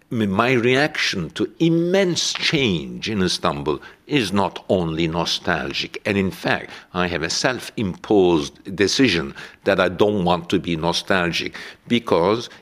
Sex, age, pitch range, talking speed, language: male, 60-79, 85-115 Hz, 130 wpm, Finnish